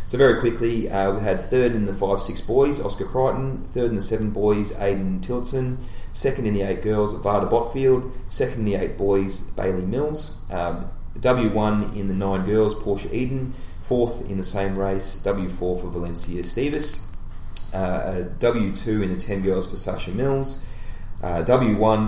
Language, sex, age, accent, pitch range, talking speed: English, male, 30-49, Australian, 90-110 Hz, 180 wpm